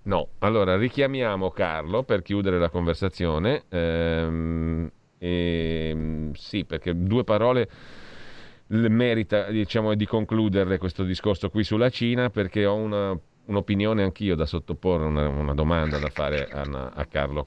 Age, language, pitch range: 40-59, Italian, 80-105 Hz